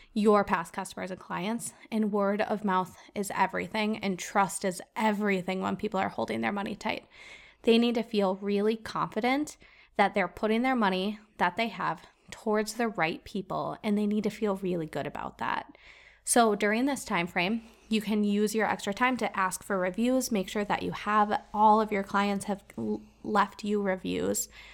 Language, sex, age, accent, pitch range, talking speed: English, female, 20-39, American, 195-225 Hz, 185 wpm